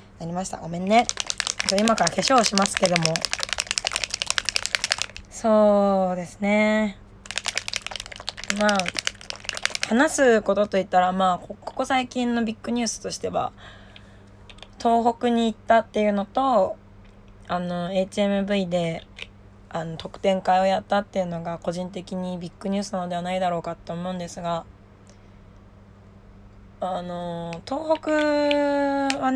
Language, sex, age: Japanese, female, 20-39